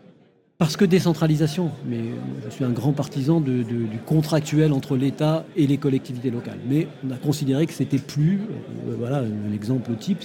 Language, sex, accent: French, male, French